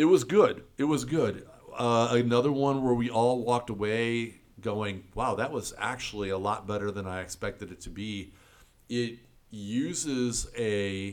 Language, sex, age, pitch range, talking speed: English, male, 50-69, 100-115 Hz, 165 wpm